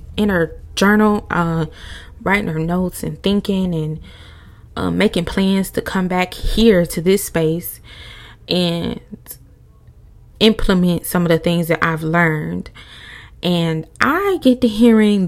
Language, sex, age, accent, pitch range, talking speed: English, female, 20-39, American, 160-225 Hz, 135 wpm